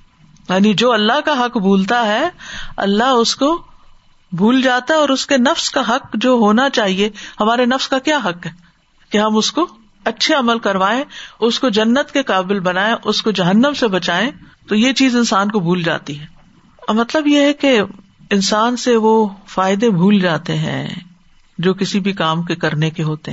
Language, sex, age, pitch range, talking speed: Urdu, female, 50-69, 185-250 Hz, 190 wpm